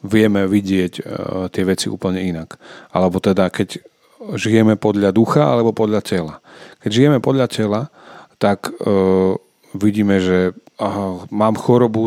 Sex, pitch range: male, 100-115 Hz